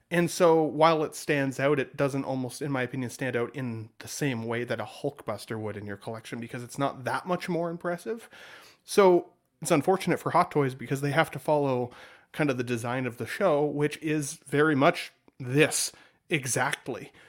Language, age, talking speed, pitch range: English, 30-49, 195 wpm, 120-160 Hz